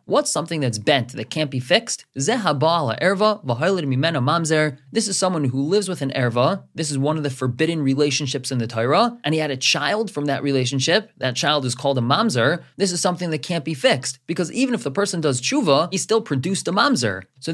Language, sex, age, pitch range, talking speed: English, male, 20-39, 130-175 Hz, 205 wpm